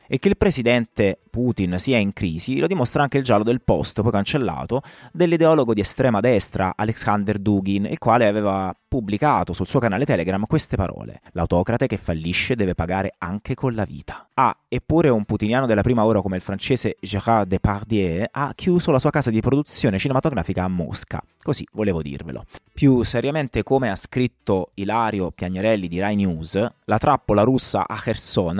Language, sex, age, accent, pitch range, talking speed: Italian, male, 30-49, native, 95-125 Hz, 170 wpm